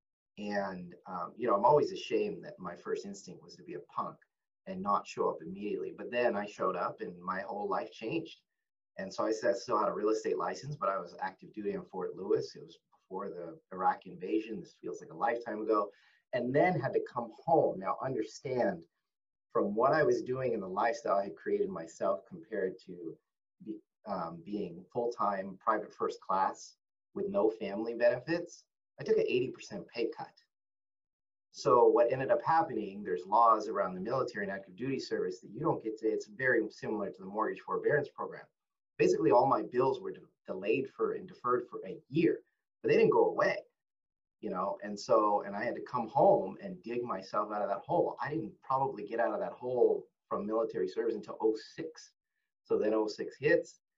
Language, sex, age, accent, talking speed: English, male, 30-49, American, 200 wpm